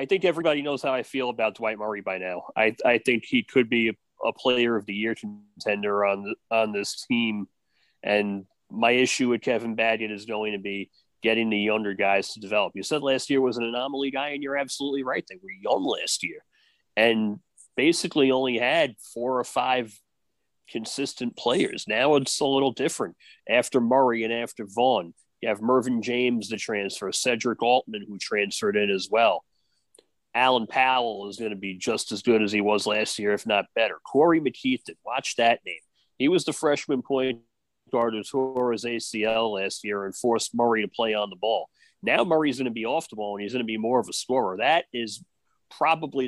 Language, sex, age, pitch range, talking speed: English, male, 30-49, 105-135 Hz, 200 wpm